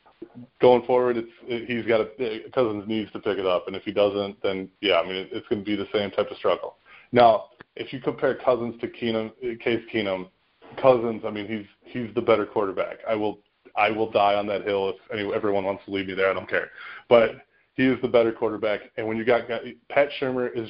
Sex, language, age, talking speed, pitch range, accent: male, English, 20-39, 230 wpm, 105-125 Hz, American